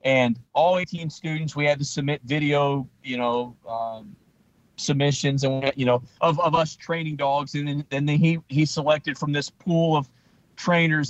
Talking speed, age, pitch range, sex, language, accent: 185 wpm, 40-59, 135-165 Hz, male, English, American